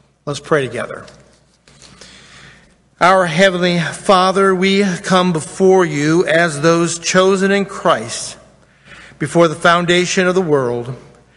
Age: 50-69